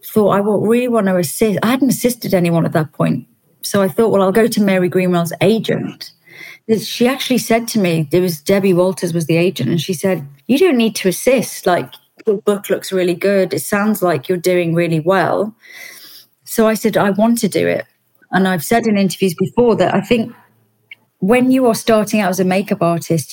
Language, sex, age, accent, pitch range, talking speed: English, female, 30-49, British, 175-210 Hz, 210 wpm